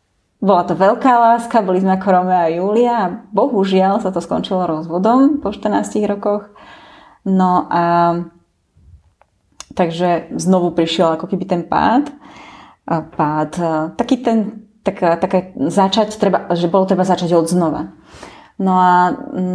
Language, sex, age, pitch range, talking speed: Slovak, female, 20-39, 165-190 Hz, 130 wpm